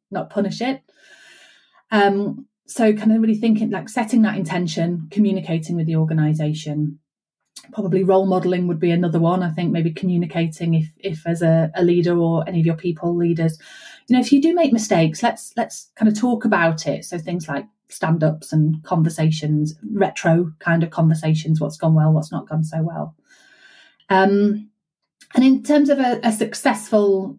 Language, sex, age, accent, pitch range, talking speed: English, female, 30-49, British, 165-215 Hz, 175 wpm